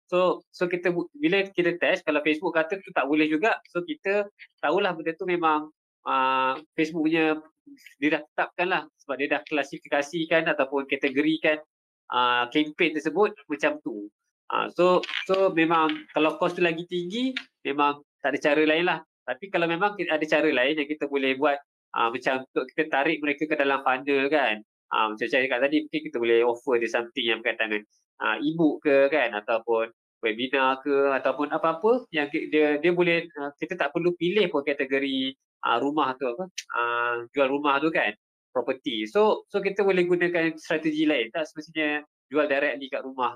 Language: Malay